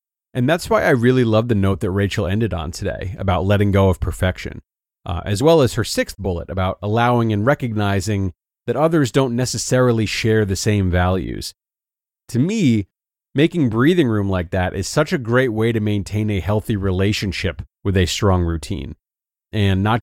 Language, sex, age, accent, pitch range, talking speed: English, male, 30-49, American, 95-125 Hz, 180 wpm